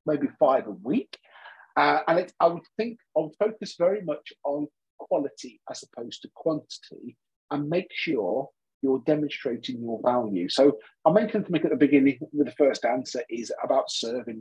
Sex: male